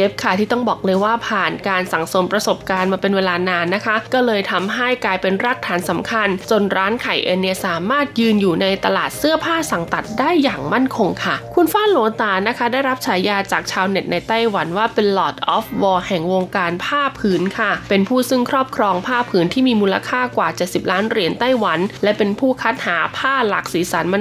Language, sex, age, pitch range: Thai, female, 20-39, 195-250 Hz